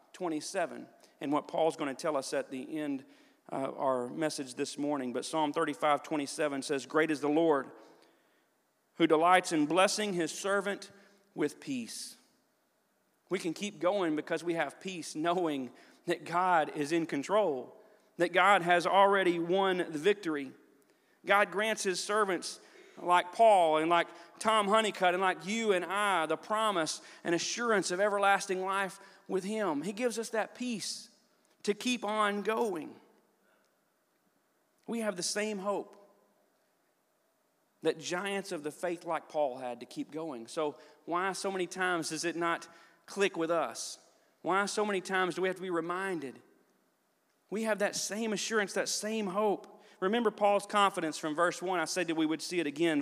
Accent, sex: American, male